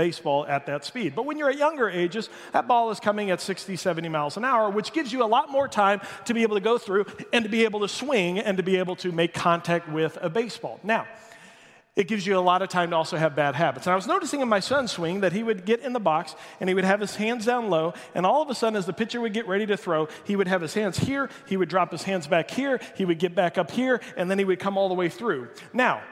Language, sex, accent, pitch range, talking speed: English, male, American, 180-230 Hz, 290 wpm